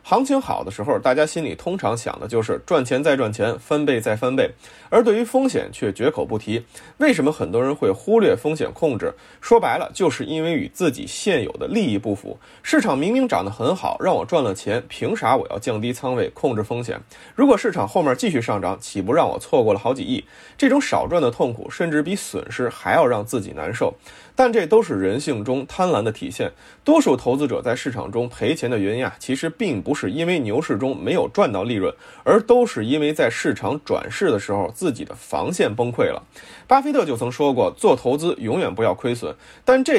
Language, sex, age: Chinese, male, 20-39